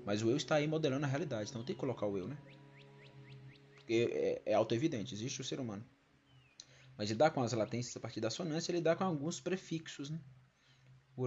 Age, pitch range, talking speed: 20-39, 115-150 Hz, 210 wpm